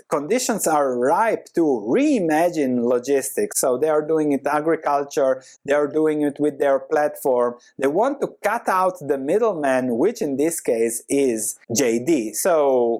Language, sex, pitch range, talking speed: English, male, 140-235 Hz, 150 wpm